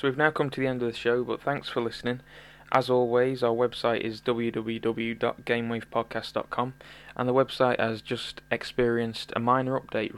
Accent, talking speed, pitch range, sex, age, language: British, 170 wpm, 115-125 Hz, male, 20-39, English